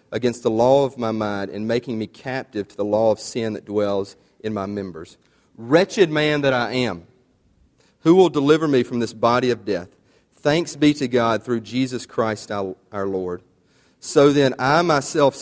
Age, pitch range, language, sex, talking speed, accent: 40-59, 110-145 Hz, English, male, 185 wpm, American